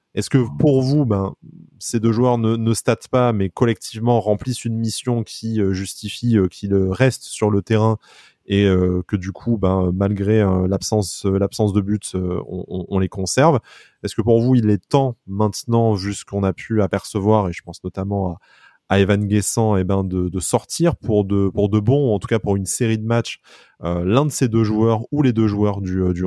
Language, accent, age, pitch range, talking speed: French, French, 20-39, 95-115 Hz, 210 wpm